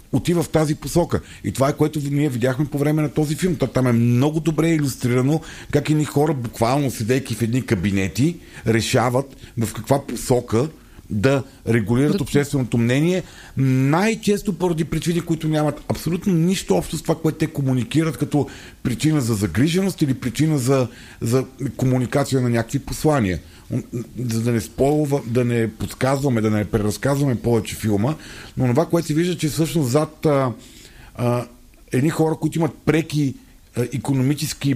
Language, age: Bulgarian, 50-69